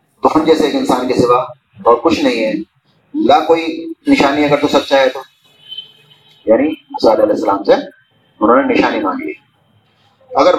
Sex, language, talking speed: male, Urdu, 155 wpm